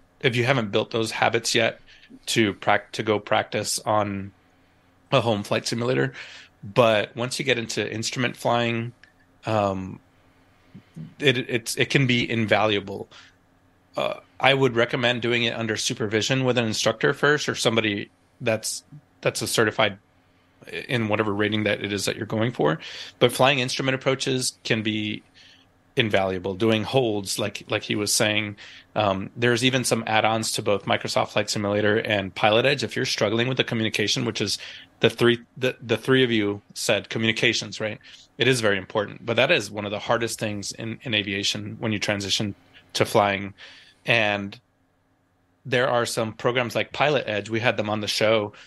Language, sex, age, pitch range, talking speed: English, male, 30-49, 100-120 Hz, 170 wpm